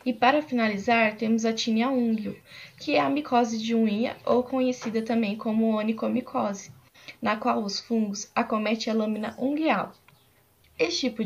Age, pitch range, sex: 10-29, 210-255 Hz, female